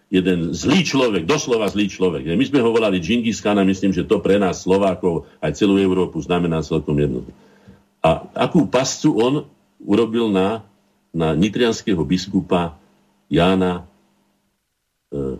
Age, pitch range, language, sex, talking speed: 50-69, 85-110 Hz, Slovak, male, 135 wpm